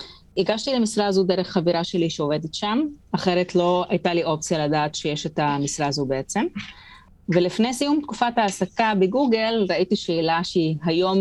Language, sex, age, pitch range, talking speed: Hebrew, female, 30-49, 160-195 Hz, 150 wpm